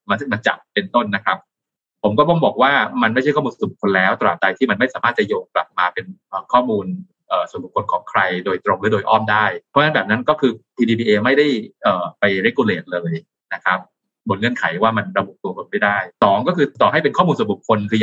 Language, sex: Thai, male